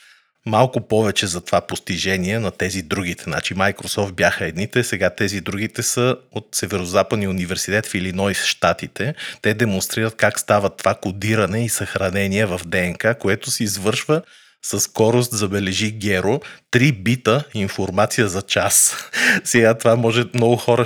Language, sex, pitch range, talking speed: Bulgarian, male, 95-115 Hz, 145 wpm